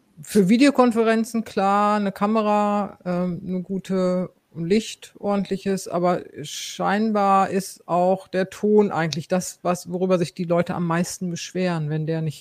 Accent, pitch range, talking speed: German, 165-195 Hz, 135 wpm